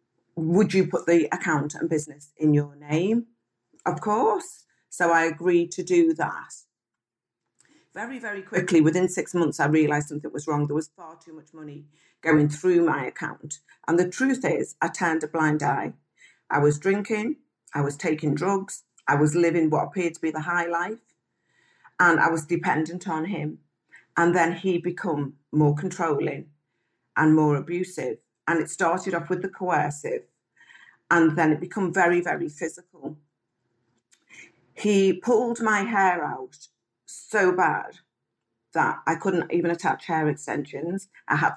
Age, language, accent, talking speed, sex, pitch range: 40-59, English, British, 160 wpm, female, 150-180 Hz